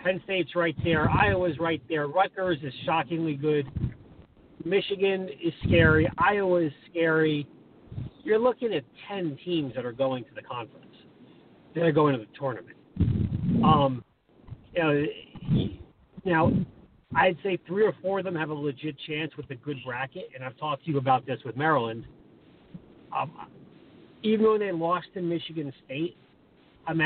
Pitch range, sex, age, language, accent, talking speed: 140-180 Hz, male, 40-59, English, American, 155 wpm